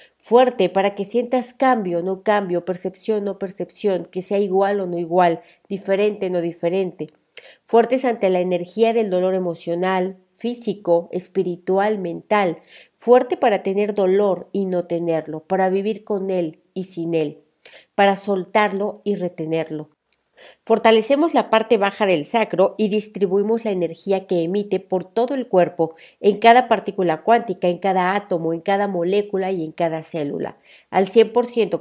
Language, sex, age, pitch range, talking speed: Spanish, female, 50-69, 175-210 Hz, 155 wpm